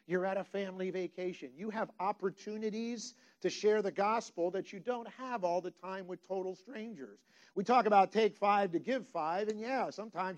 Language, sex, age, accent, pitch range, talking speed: English, male, 50-69, American, 150-215 Hz, 190 wpm